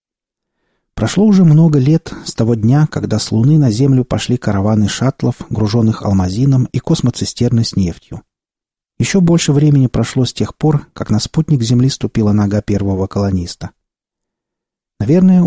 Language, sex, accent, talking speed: Russian, male, native, 145 wpm